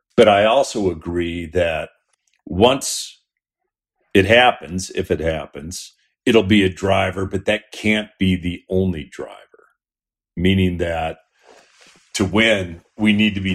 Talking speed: 135 wpm